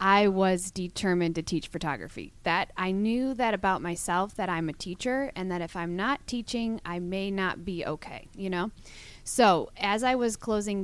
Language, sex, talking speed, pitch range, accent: English, female, 190 wpm, 165-200 Hz, American